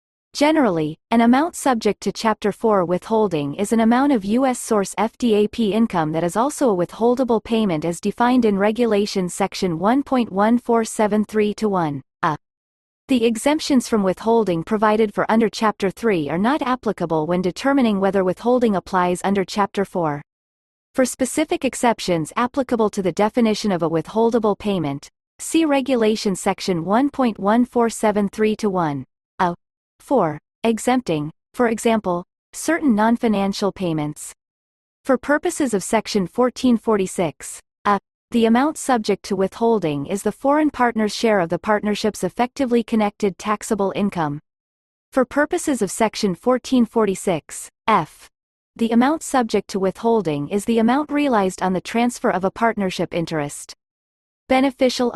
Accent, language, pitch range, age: American, English, 185-240 Hz, 40-59